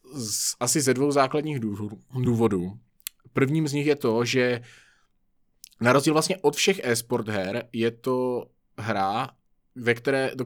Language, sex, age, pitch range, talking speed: Czech, male, 20-39, 115-130 Hz, 120 wpm